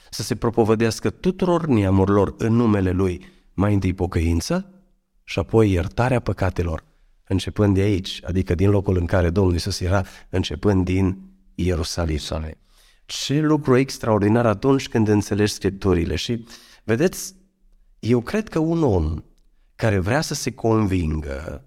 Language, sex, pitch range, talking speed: Romanian, male, 95-140 Hz, 135 wpm